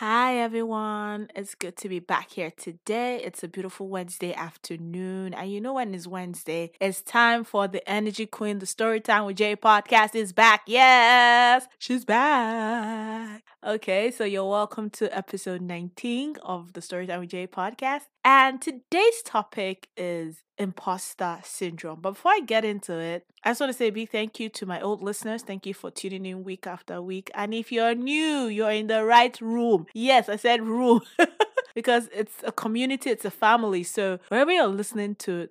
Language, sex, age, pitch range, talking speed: English, female, 20-39, 185-230 Hz, 180 wpm